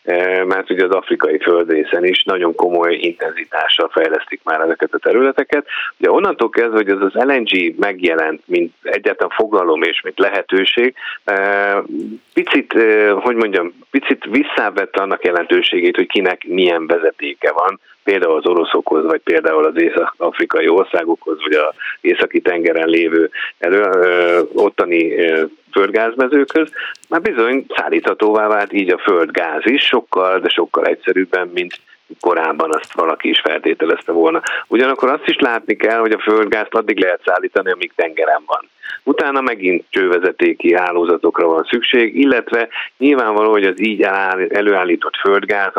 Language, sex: Hungarian, male